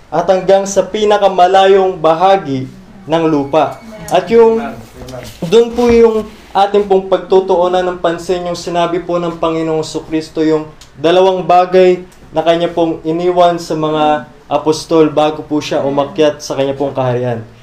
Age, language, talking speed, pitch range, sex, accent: 20-39, Filipino, 140 wpm, 155-190 Hz, male, native